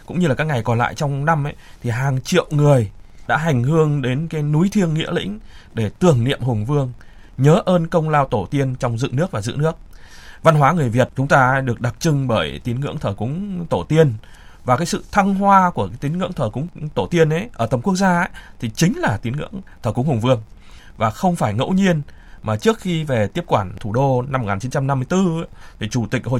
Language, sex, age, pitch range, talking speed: Vietnamese, male, 20-39, 120-160 Hz, 235 wpm